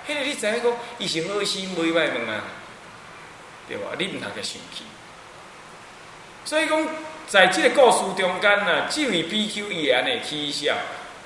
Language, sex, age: Chinese, male, 20-39